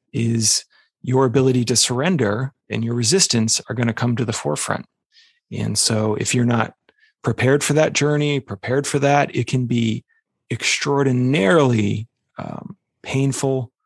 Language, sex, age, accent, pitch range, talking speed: English, male, 30-49, American, 115-135 Hz, 145 wpm